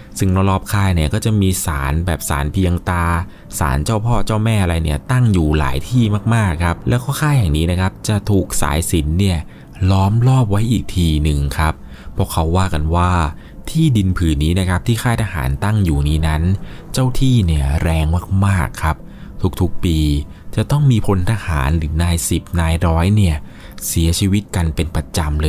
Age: 20-39